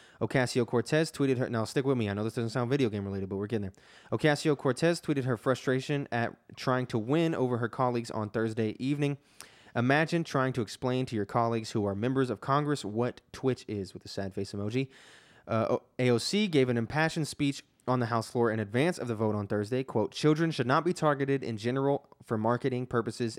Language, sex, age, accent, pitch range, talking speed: English, male, 20-39, American, 110-140 Hz, 215 wpm